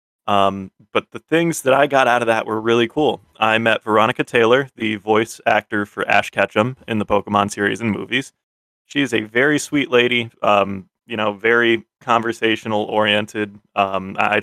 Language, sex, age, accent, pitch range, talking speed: English, male, 20-39, American, 105-125 Hz, 180 wpm